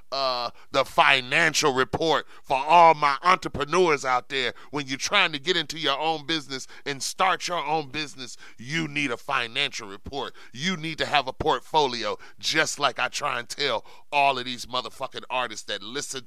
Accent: American